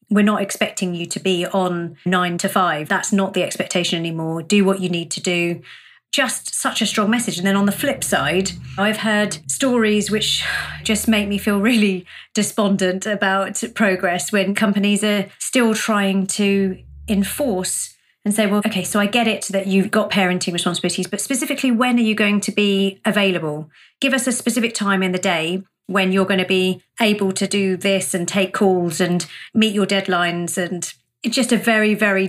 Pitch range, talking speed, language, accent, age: 180-215 Hz, 190 wpm, English, British, 40-59